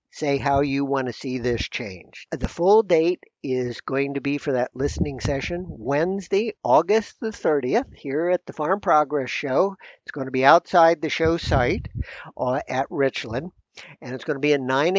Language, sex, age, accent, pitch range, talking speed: English, male, 60-79, American, 135-175 Hz, 185 wpm